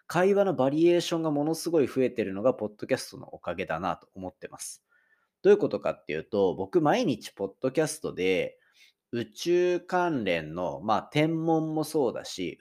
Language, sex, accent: Japanese, male, native